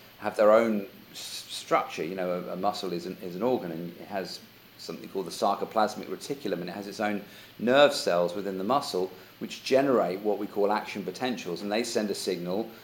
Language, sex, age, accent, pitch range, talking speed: Italian, male, 40-59, British, 95-115 Hz, 205 wpm